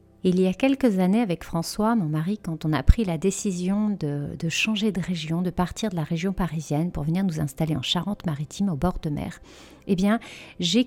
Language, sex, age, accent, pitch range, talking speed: French, female, 40-59, French, 180-225 Hz, 215 wpm